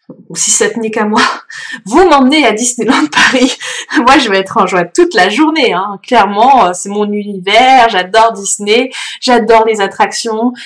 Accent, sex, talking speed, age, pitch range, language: French, female, 165 wpm, 20-39, 200-245 Hz, French